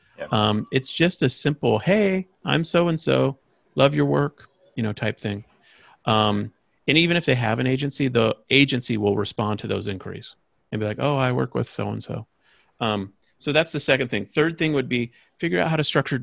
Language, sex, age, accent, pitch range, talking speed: English, male, 40-59, American, 105-130 Hz, 205 wpm